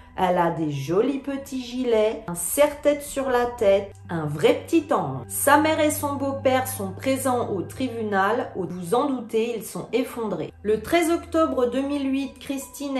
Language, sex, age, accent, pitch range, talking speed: French, female, 40-59, French, 215-280 Hz, 165 wpm